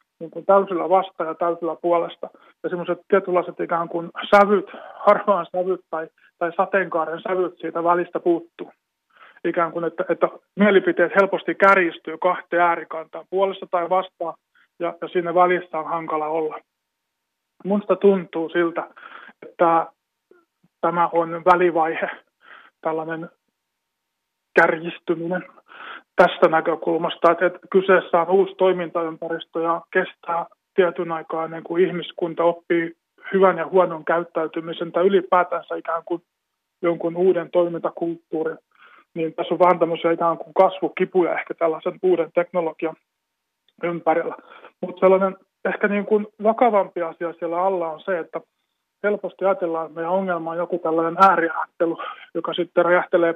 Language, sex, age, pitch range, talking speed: Finnish, male, 20-39, 165-185 Hz, 125 wpm